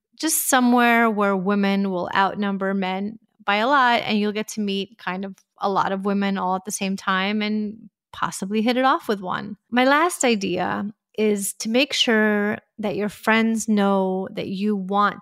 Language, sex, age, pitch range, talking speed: English, female, 30-49, 195-225 Hz, 185 wpm